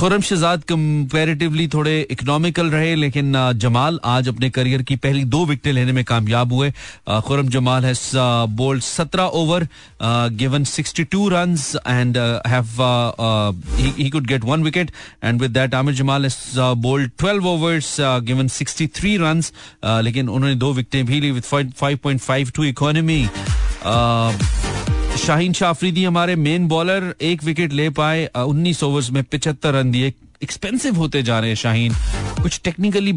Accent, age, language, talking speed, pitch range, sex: native, 40-59, Hindi, 145 wpm, 125-155 Hz, male